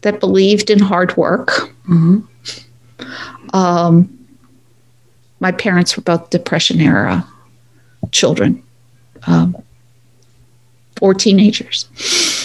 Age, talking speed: 50-69, 85 wpm